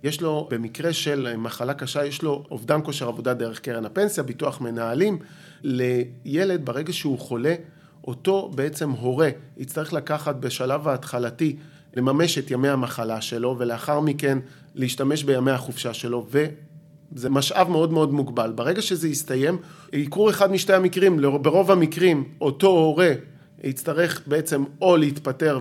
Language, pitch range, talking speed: Hebrew, 135-165 Hz, 135 wpm